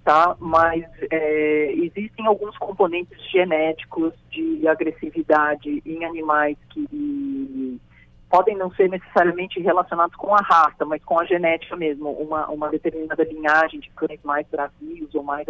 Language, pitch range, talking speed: Portuguese, 155-200 Hz, 130 wpm